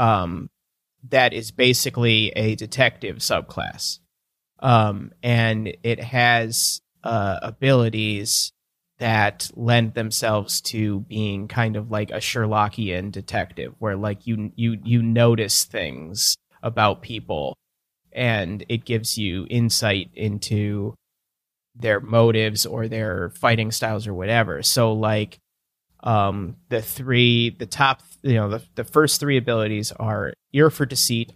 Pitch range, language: 105-120 Hz, English